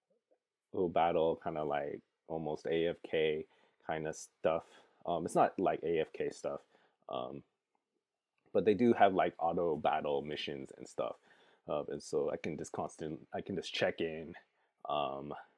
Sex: male